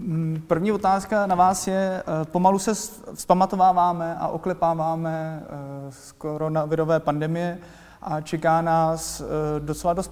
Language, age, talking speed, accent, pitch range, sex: Czech, 20-39, 105 wpm, native, 155-175 Hz, male